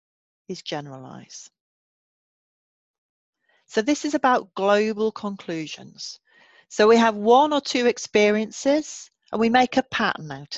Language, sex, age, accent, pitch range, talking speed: English, female, 40-59, British, 170-240 Hz, 120 wpm